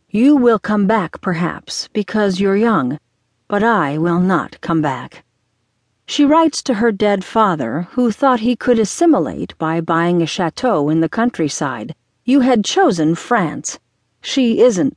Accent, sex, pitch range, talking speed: American, female, 160-240 Hz, 150 wpm